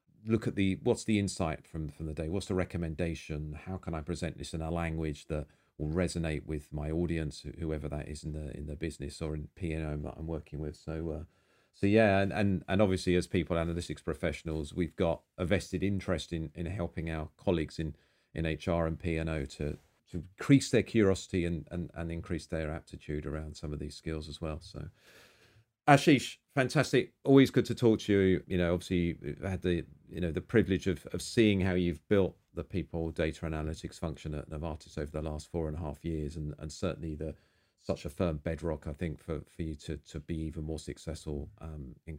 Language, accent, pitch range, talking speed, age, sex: English, British, 80-100 Hz, 210 wpm, 40-59, male